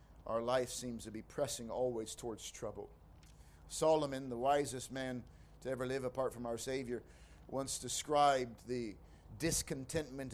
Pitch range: 130-175 Hz